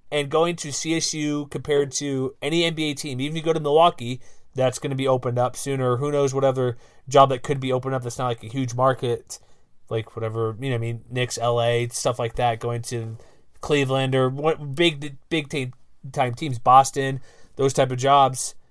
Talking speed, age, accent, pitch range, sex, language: 200 wpm, 30-49, American, 125-145 Hz, male, English